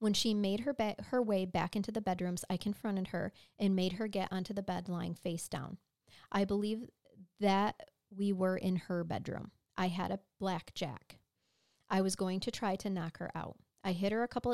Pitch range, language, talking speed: 180-200 Hz, English, 205 wpm